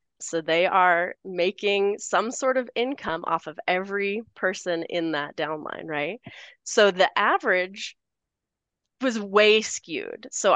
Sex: female